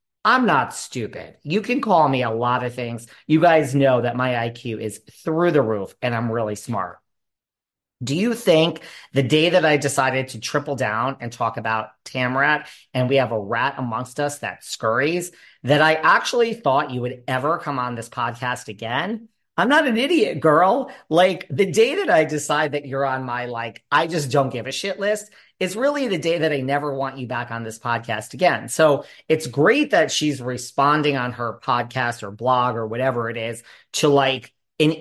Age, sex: 40-59, male